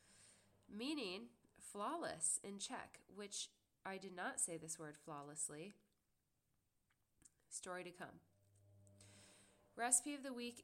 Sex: female